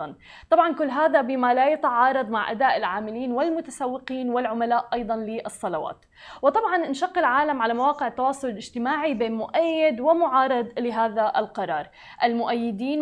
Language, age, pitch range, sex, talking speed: Arabic, 20-39, 230-295 Hz, female, 120 wpm